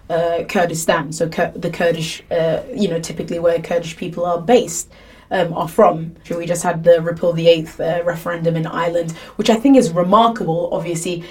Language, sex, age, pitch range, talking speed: English, female, 20-39, 170-205 Hz, 180 wpm